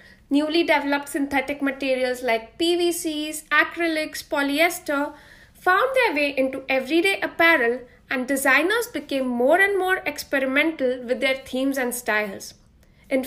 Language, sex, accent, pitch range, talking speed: English, female, Indian, 260-350 Hz, 120 wpm